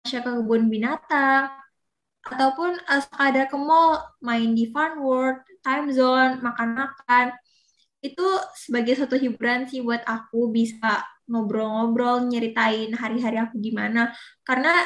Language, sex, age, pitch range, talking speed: Indonesian, female, 20-39, 230-265 Hz, 115 wpm